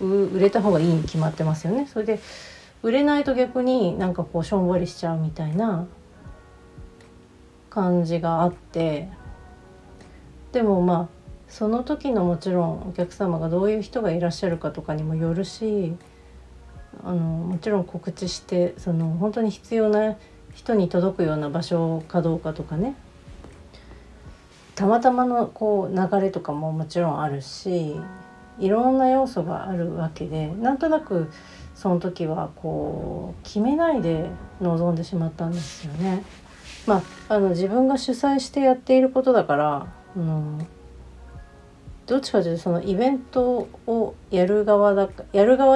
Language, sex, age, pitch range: Japanese, female, 40-59, 160-210 Hz